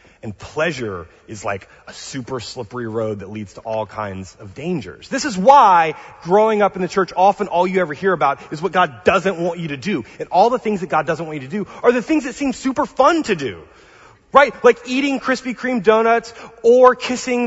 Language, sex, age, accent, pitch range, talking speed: English, male, 30-49, American, 130-220 Hz, 225 wpm